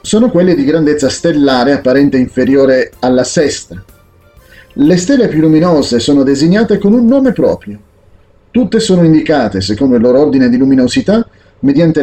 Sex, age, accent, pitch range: male, 40-59, native, 115-180 Hz